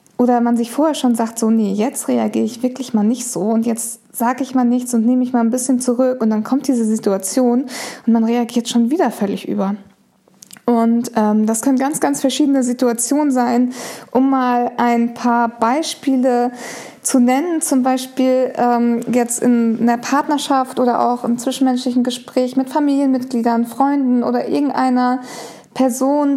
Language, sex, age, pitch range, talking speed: English, female, 20-39, 235-270 Hz, 170 wpm